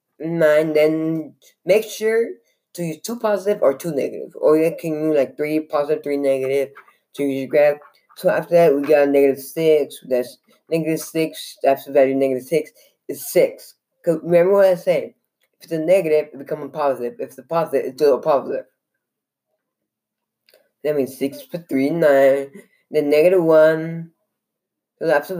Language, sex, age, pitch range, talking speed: English, female, 10-29, 145-180 Hz, 185 wpm